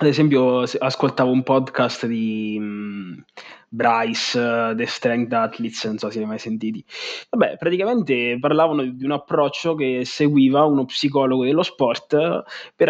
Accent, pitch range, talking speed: native, 125-150 Hz, 135 wpm